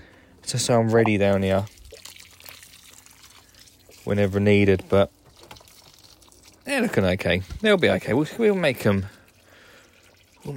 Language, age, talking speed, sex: English, 20-39, 115 wpm, male